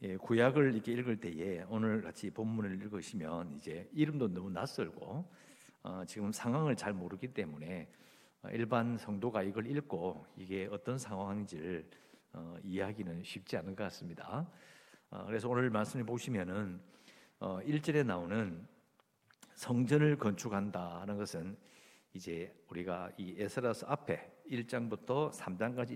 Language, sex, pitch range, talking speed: English, male, 95-125 Hz, 115 wpm